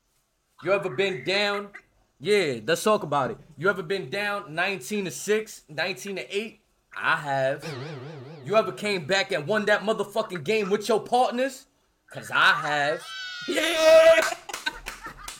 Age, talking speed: 20-39, 145 wpm